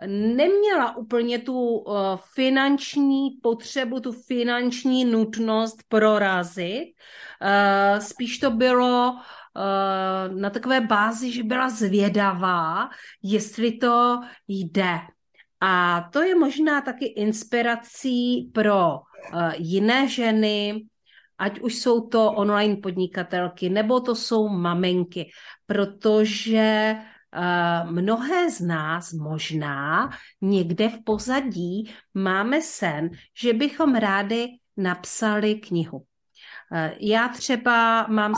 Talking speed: 90 wpm